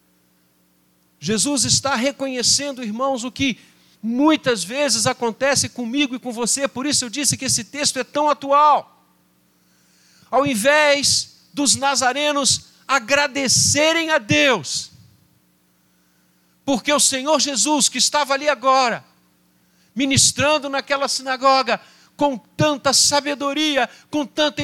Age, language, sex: 50-69, Portuguese, male